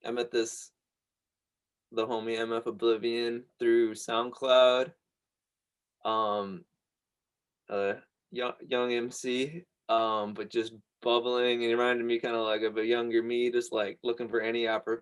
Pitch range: 110-125 Hz